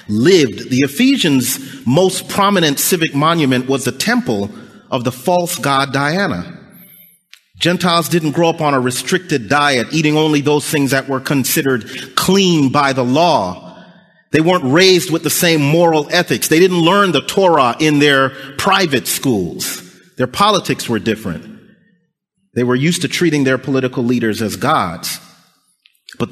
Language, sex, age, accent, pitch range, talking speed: English, male, 40-59, American, 130-180 Hz, 150 wpm